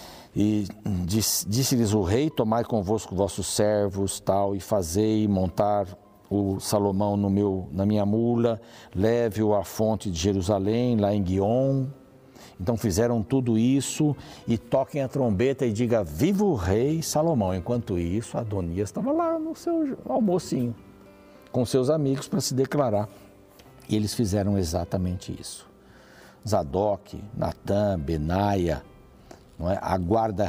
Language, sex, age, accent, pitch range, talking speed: Portuguese, male, 60-79, Brazilian, 100-130 Hz, 130 wpm